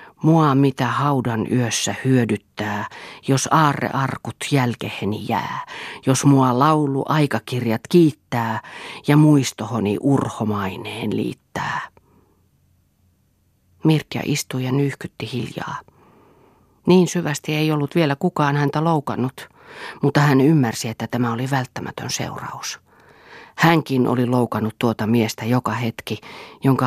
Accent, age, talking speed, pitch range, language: native, 40-59, 105 wpm, 115-150 Hz, Finnish